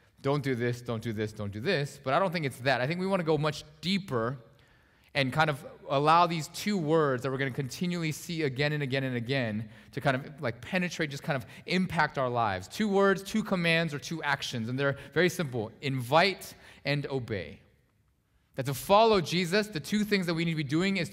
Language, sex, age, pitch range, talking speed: English, male, 20-39, 110-155 Hz, 225 wpm